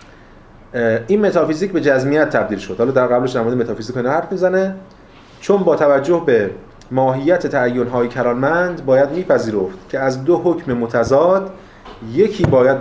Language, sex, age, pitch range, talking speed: Persian, male, 30-49, 120-165 Hz, 135 wpm